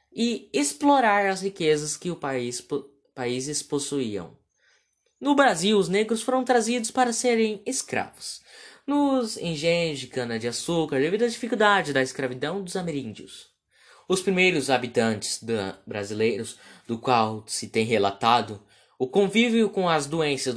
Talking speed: 130 wpm